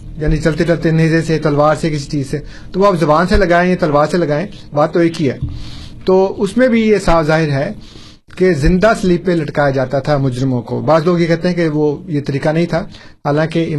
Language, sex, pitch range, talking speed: Urdu, male, 145-185 Hz, 235 wpm